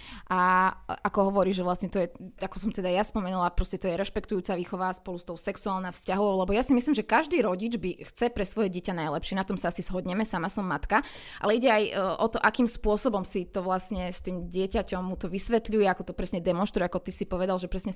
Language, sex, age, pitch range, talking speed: Slovak, female, 20-39, 185-230 Hz, 230 wpm